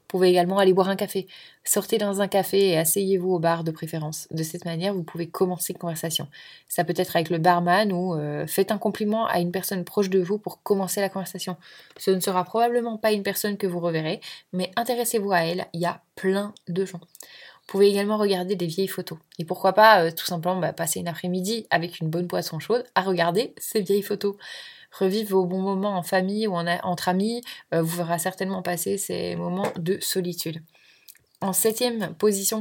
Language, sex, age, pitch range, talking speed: French, female, 20-39, 175-205 Hz, 210 wpm